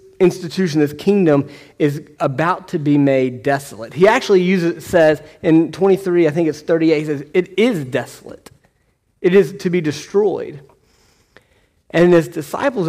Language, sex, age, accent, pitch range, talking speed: English, male, 30-49, American, 150-190 Hz, 150 wpm